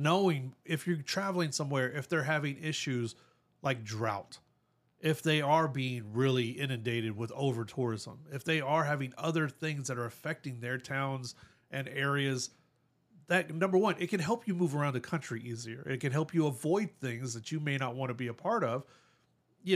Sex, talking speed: male, 185 wpm